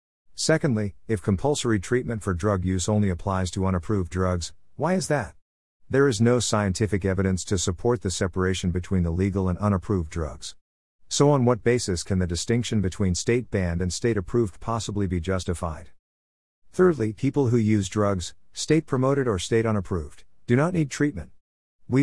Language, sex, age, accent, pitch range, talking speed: English, male, 50-69, American, 90-115 Hz, 165 wpm